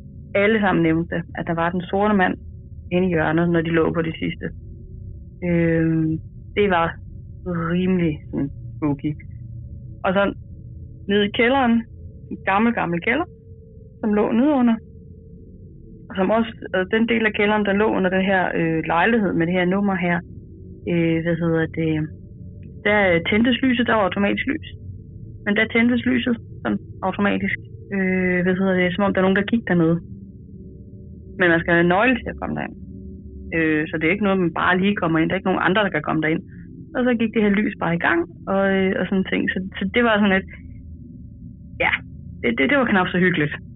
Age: 30-49